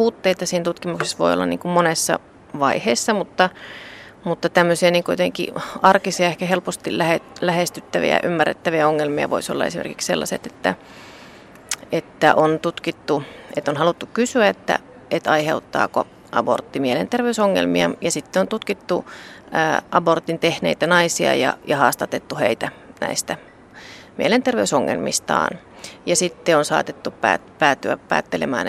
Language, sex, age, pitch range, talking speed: Finnish, female, 30-49, 155-190 Hz, 115 wpm